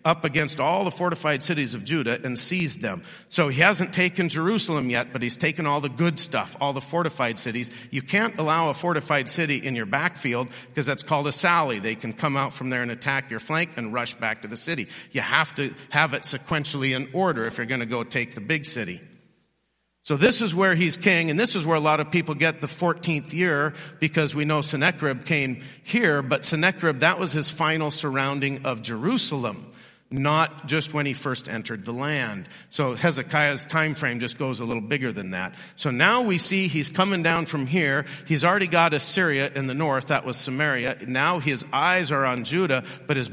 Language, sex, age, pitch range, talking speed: English, male, 50-69, 135-175 Hz, 215 wpm